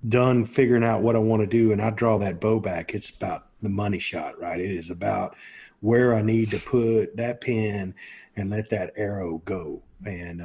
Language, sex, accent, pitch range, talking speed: English, male, American, 105-135 Hz, 205 wpm